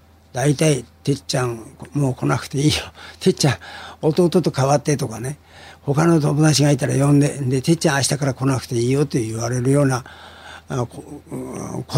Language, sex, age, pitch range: Japanese, male, 50-69, 120-175 Hz